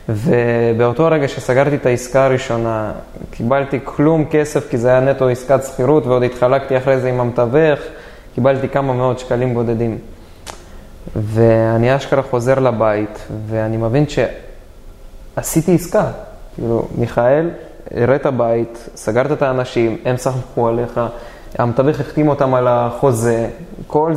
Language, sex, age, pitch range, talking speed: Hebrew, male, 20-39, 120-160 Hz, 125 wpm